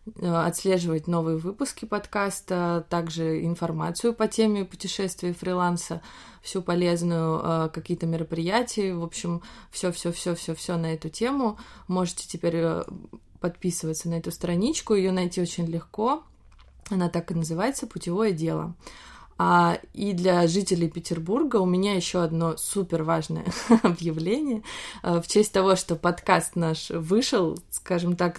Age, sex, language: 20-39, female, Russian